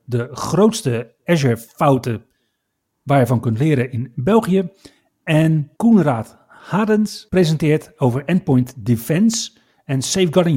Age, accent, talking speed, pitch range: 40-59, Dutch, 110 wpm, 125-180 Hz